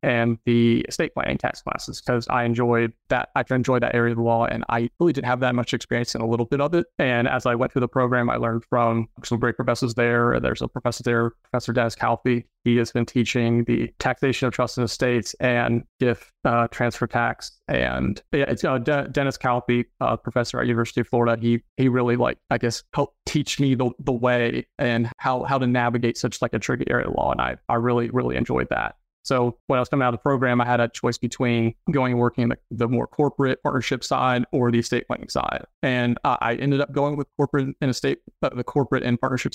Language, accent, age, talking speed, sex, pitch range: English, American, 30-49, 235 wpm, male, 120-125 Hz